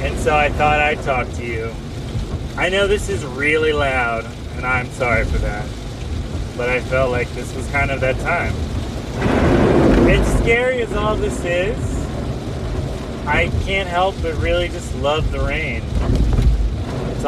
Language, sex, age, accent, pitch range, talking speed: English, male, 30-49, American, 110-140 Hz, 155 wpm